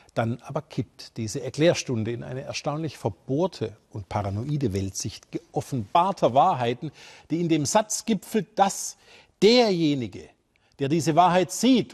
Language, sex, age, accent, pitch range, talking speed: German, male, 50-69, German, 115-155 Hz, 125 wpm